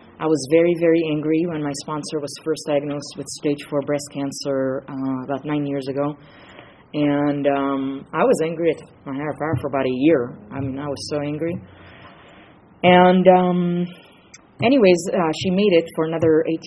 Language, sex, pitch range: English, female, 135-160 Hz